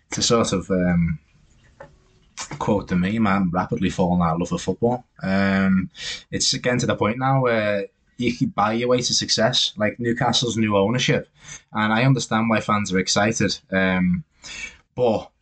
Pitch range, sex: 95-110 Hz, male